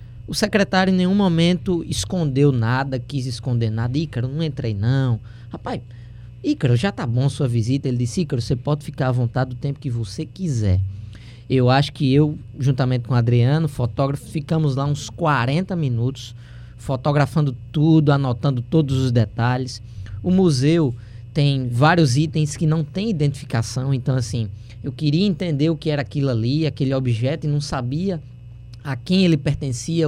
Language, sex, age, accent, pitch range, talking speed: Portuguese, male, 20-39, Brazilian, 120-150 Hz, 165 wpm